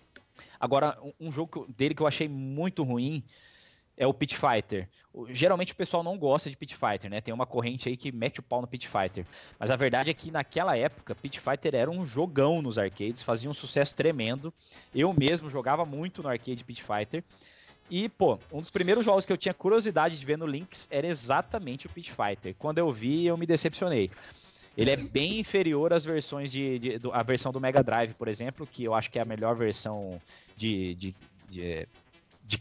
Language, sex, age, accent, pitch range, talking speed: Portuguese, male, 20-39, Brazilian, 120-155 Hz, 210 wpm